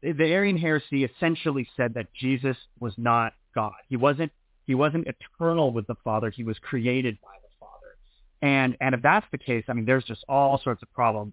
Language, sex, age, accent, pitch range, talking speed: English, male, 30-49, American, 115-145 Hz, 200 wpm